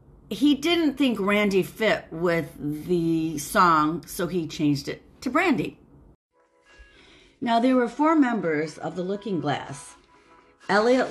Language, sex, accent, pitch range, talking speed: English, female, American, 150-205 Hz, 130 wpm